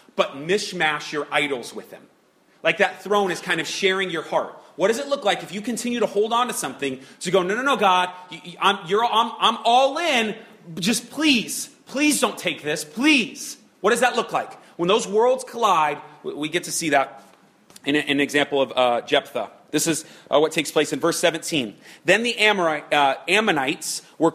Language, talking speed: English, 200 wpm